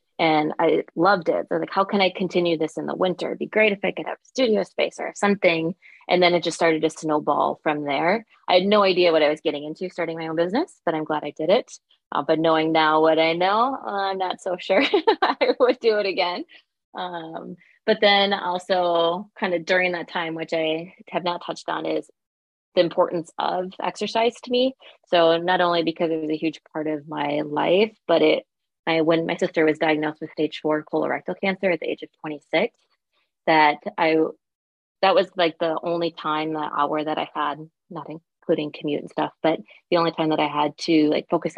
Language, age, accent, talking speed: English, 20-39, American, 215 wpm